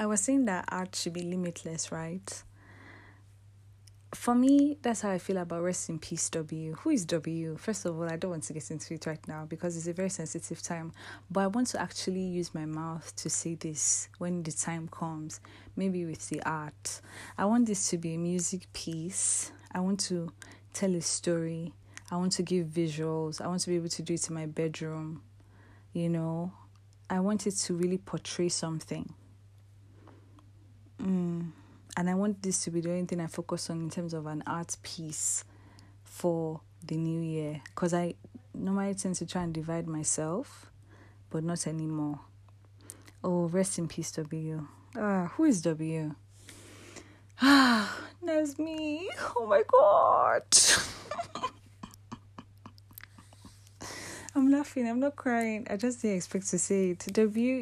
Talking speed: 170 wpm